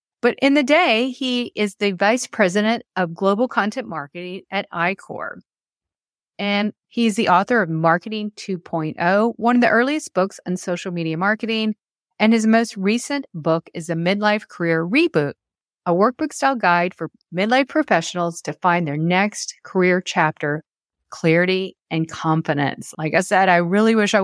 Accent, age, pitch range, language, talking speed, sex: American, 40-59, 170-220 Hz, English, 160 wpm, female